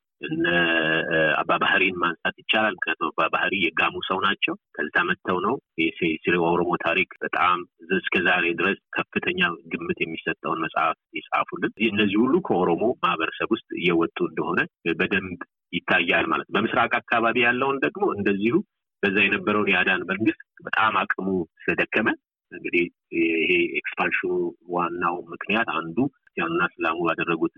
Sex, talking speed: male, 130 wpm